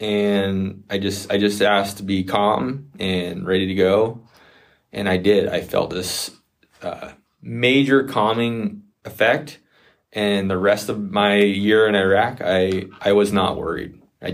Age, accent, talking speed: 20-39, American, 155 wpm